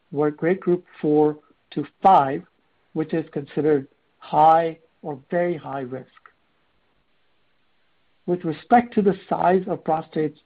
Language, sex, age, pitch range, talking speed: English, male, 60-79, 150-180 Hz, 120 wpm